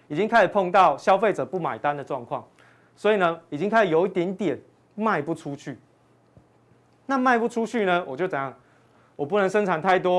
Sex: male